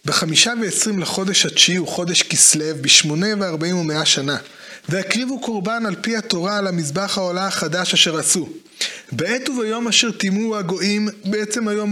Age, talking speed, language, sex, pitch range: 20-39, 145 wpm, Hebrew, male, 180-220 Hz